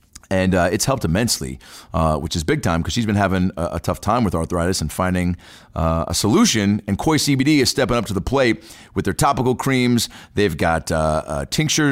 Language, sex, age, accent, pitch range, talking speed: English, male, 30-49, American, 90-130 Hz, 215 wpm